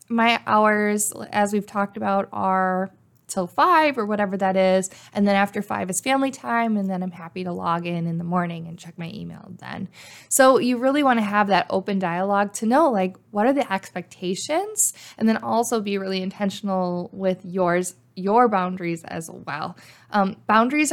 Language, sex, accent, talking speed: English, female, American, 185 wpm